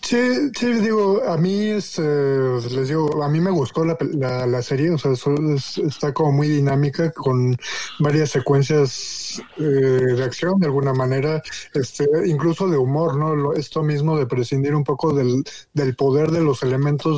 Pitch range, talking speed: 135-155 Hz, 180 wpm